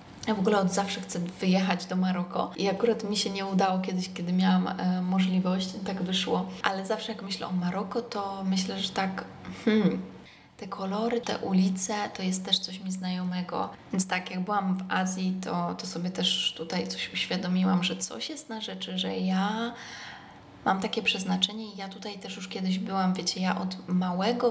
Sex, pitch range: female, 180-210 Hz